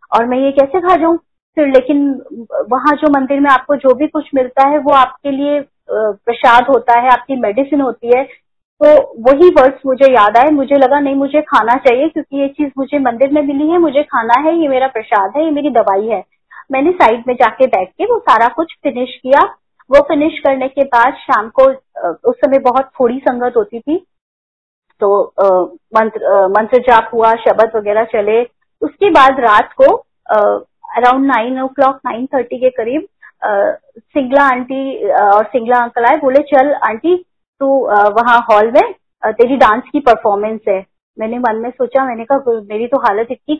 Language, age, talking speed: Hindi, 30-49, 185 wpm